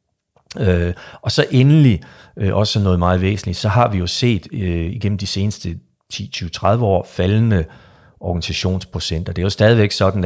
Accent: native